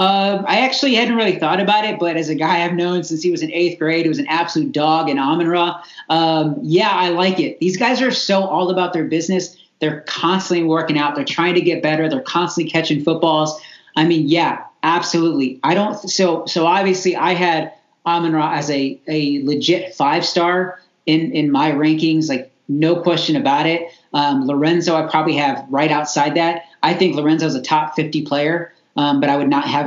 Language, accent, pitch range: English, American, 150-175 Hz